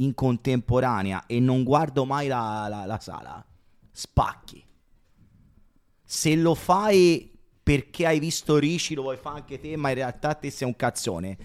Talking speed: 155 wpm